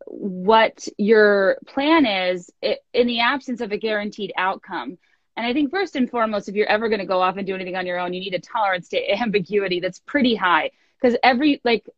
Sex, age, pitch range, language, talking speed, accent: female, 20-39, 200-260 Hz, English, 210 wpm, American